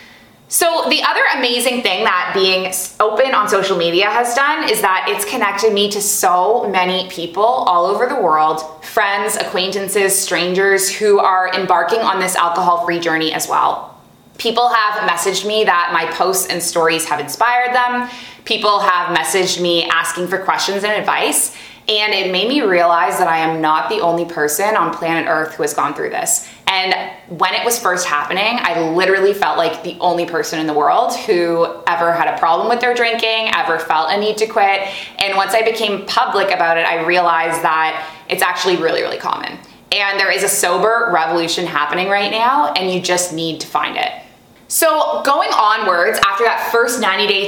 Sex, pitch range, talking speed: female, 170-215 Hz, 185 wpm